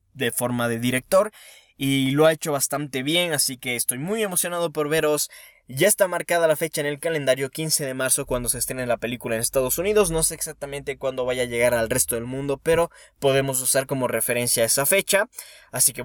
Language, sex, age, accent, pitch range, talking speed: Spanish, male, 20-39, Mexican, 115-160 Hz, 210 wpm